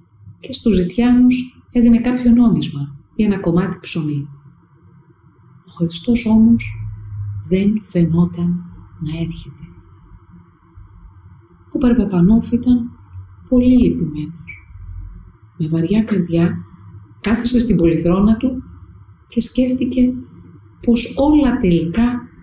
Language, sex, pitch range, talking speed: Greek, female, 145-235 Hz, 90 wpm